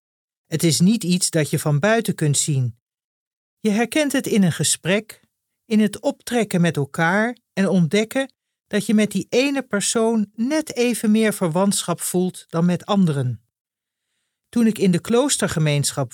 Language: Dutch